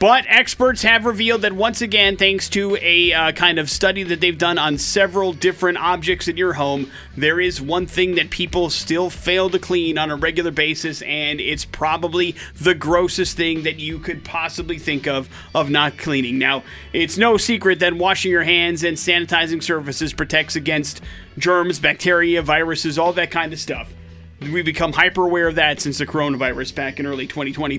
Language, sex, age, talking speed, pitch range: English, male, 30-49, 190 wpm, 155-195 Hz